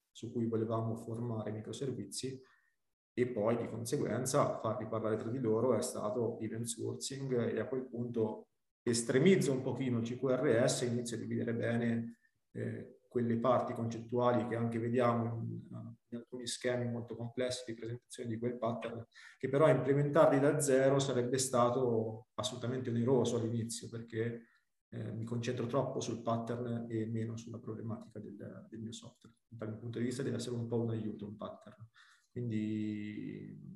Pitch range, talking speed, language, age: 115-130 Hz, 160 wpm, Italian, 30-49